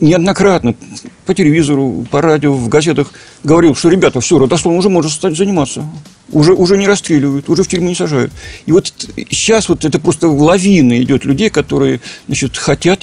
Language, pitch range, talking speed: Russian, 135-180 Hz, 170 wpm